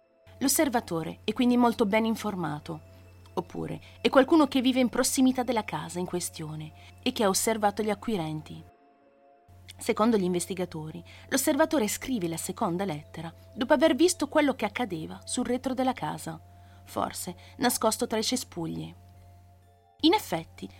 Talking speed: 140 wpm